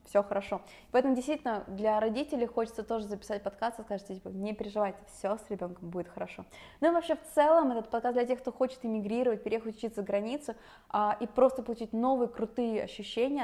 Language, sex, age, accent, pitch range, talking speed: Russian, female, 20-39, native, 205-255 Hz, 195 wpm